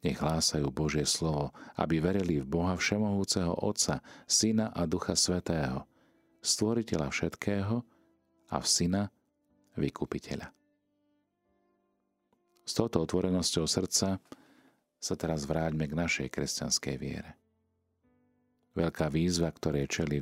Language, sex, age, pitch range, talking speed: Slovak, male, 40-59, 75-95 Hz, 105 wpm